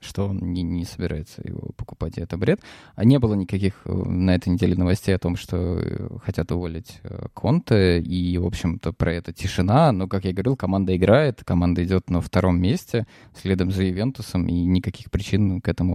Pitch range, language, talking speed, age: 95-115 Hz, Russian, 175 wpm, 20-39